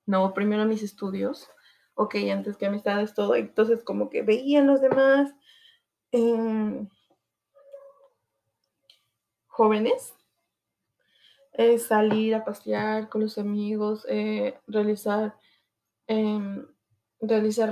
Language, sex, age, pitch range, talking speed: Spanish, female, 20-39, 190-230 Hz, 95 wpm